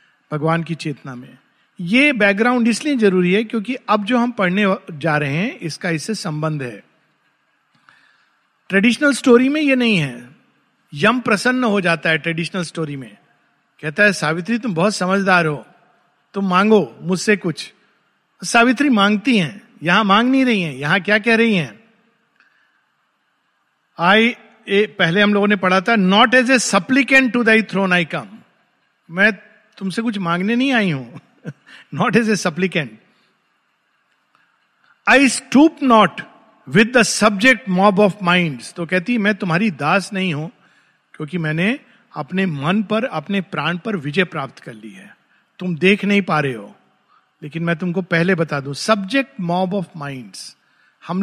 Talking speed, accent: 150 wpm, native